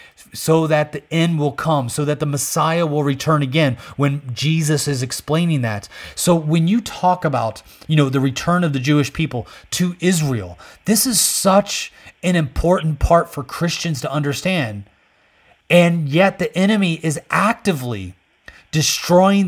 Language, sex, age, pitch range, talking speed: English, male, 30-49, 140-170 Hz, 155 wpm